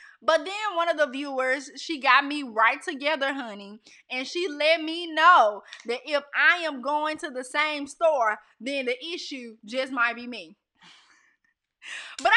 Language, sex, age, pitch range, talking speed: English, female, 20-39, 245-335 Hz, 165 wpm